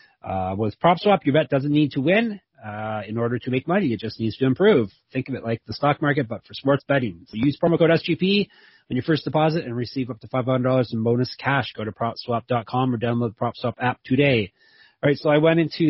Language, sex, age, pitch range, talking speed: English, male, 30-49, 110-135 Hz, 240 wpm